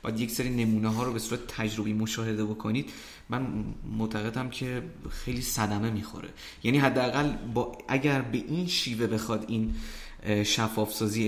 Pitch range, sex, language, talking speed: 110-120 Hz, male, Persian, 140 wpm